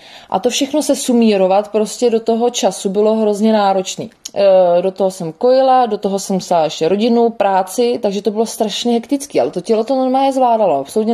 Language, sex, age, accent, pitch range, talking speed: Czech, female, 20-39, native, 195-240 Hz, 185 wpm